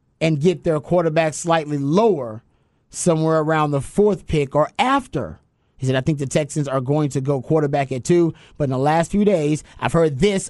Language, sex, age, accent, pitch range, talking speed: English, male, 30-49, American, 135-165 Hz, 200 wpm